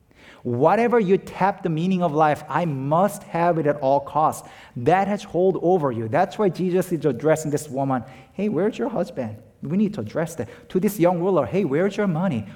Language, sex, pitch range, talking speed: English, male, 120-175 Hz, 205 wpm